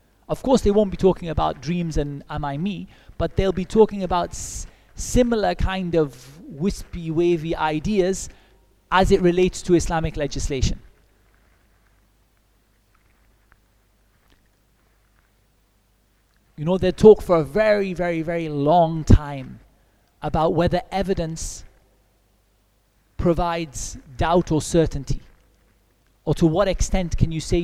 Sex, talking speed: male, 115 wpm